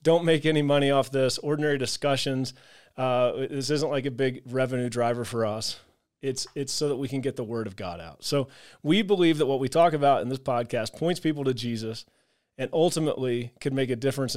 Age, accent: 30-49, American